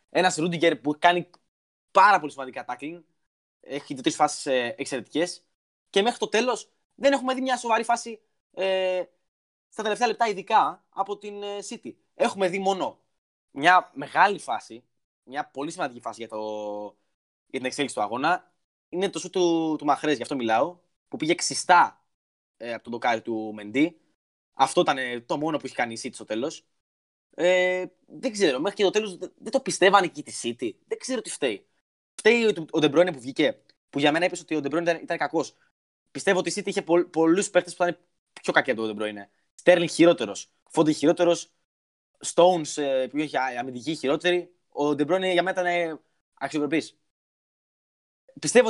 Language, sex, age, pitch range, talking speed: Greek, male, 20-39, 140-195 Hz, 145 wpm